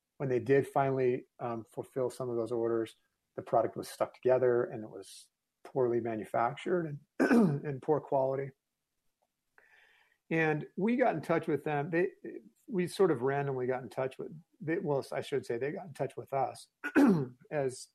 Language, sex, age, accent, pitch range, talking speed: English, male, 40-59, American, 115-140 Hz, 165 wpm